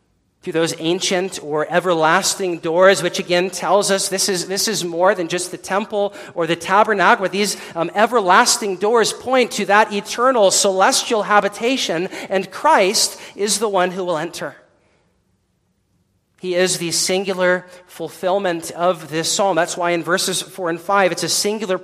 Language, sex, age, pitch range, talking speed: English, male, 40-59, 155-195 Hz, 155 wpm